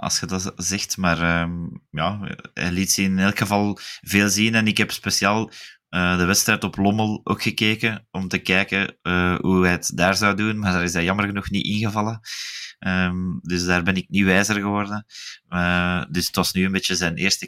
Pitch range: 85-100 Hz